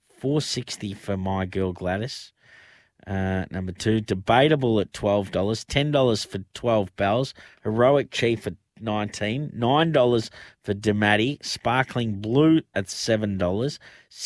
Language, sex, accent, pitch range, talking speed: English, male, Australian, 105-130 Hz, 110 wpm